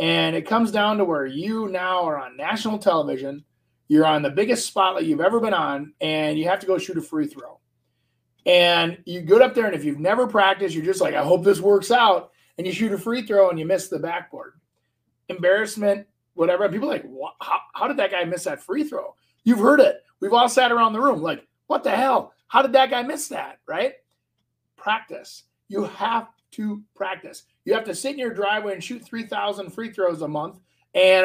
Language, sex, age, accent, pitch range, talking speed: English, male, 30-49, American, 180-240 Hz, 220 wpm